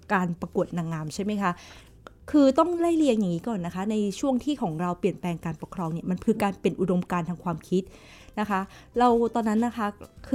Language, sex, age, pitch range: Thai, female, 20-39, 185-245 Hz